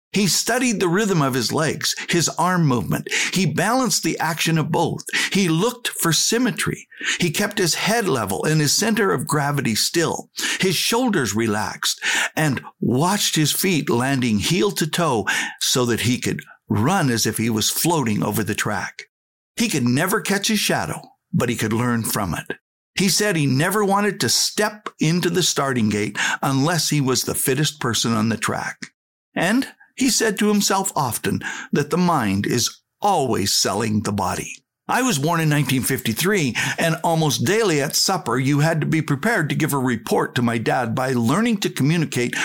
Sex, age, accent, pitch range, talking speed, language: male, 60-79, American, 125-190 Hz, 180 wpm, English